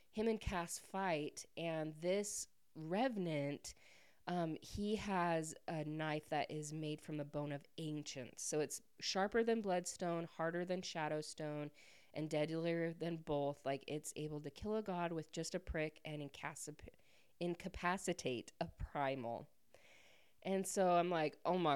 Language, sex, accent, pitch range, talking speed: English, female, American, 150-190 Hz, 145 wpm